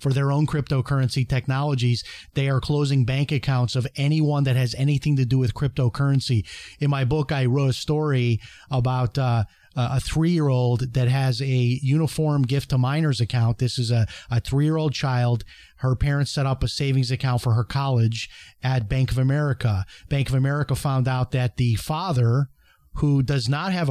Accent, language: American, English